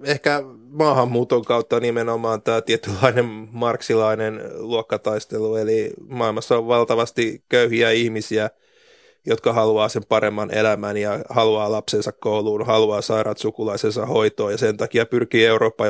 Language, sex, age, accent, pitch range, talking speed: Finnish, male, 30-49, native, 110-135 Hz, 120 wpm